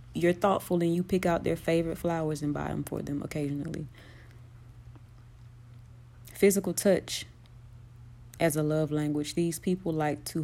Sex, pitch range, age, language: female, 120-155 Hz, 30-49, English